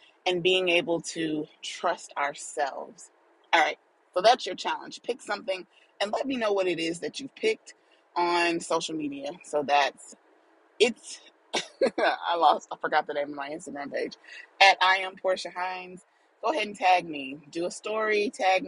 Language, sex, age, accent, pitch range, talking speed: English, female, 30-49, American, 150-185 Hz, 175 wpm